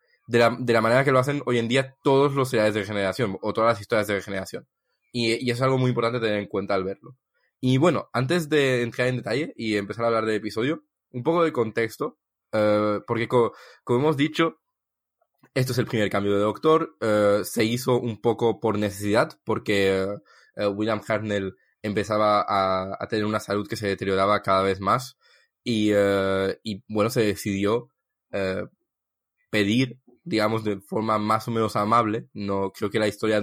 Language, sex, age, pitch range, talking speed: English, male, 20-39, 105-120 Hz, 195 wpm